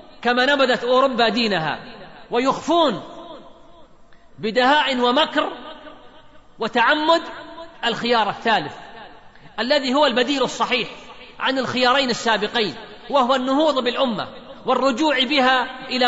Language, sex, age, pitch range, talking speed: Arabic, male, 40-59, 230-275 Hz, 85 wpm